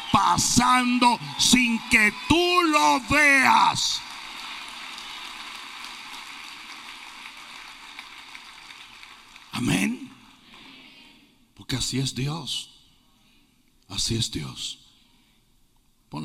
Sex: male